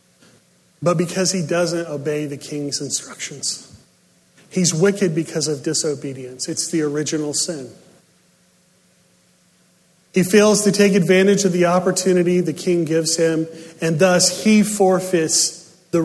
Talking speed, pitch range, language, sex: 125 wpm, 160-185 Hz, English, male